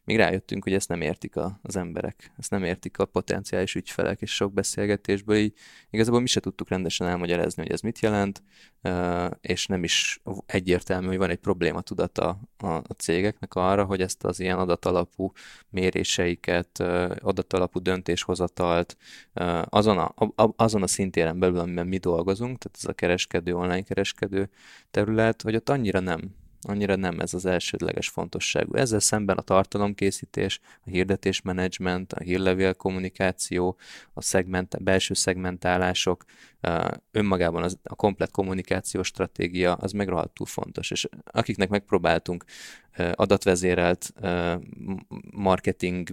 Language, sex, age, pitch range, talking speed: Hungarian, male, 20-39, 90-100 Hz, 130 wpm